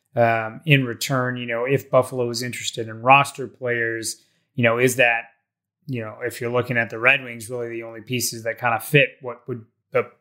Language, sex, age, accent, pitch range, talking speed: English, male, 20-39, American, 120-135 Hz, 210 wpm